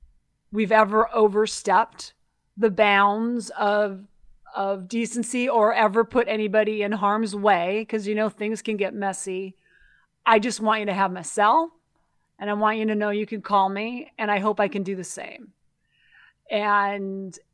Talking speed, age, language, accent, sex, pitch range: 165 wpm, 40-59, English, American, female, 195-225 Hz